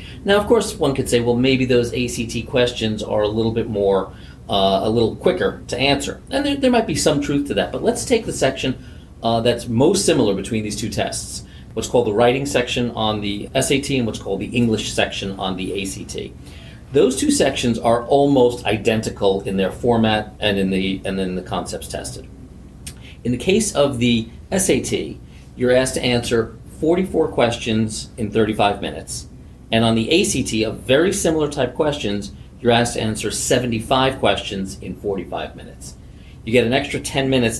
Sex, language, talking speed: male, English, 185 wpm